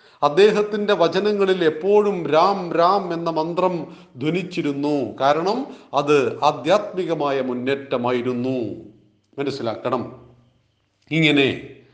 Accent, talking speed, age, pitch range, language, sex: native, 70 wpm, 40-59, 150-205 Hz, Malayalam, male